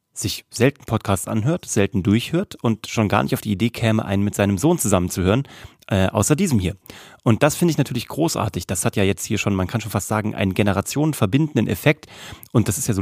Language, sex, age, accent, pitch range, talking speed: German, male, 30-49, German, 100-125 Hz, 220 wpm